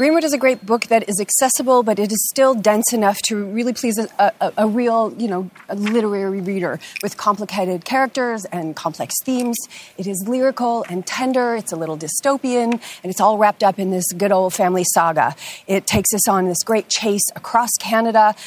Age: 30-49